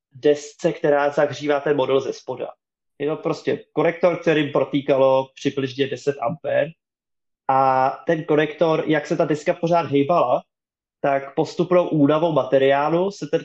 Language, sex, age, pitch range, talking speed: Czech, male, 20-39, 140-165 Hz, 140 wpm